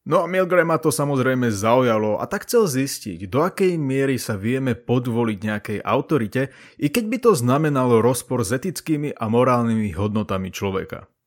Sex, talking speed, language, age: male, 160 wpm, Slovak, 30-49